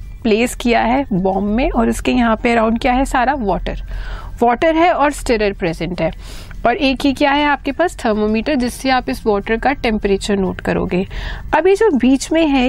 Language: Hindi